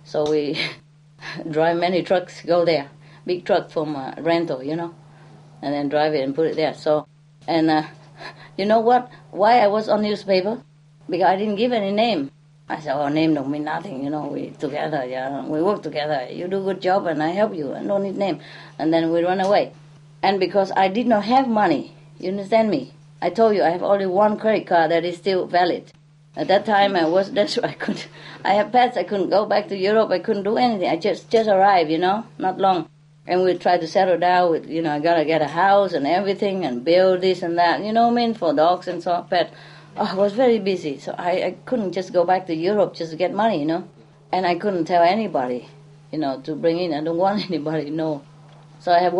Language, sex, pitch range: English, female, 155-195 Hz